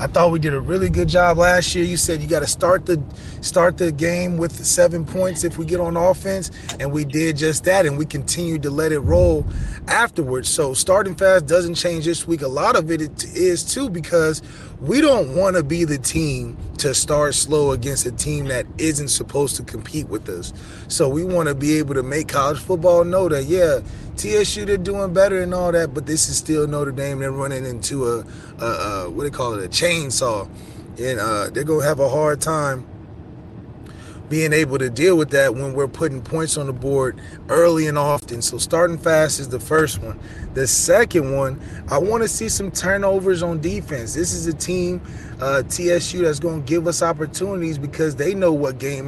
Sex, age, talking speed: male, 20-39, 205 wpm